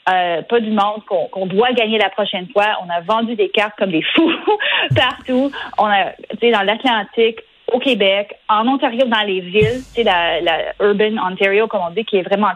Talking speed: 210 wpm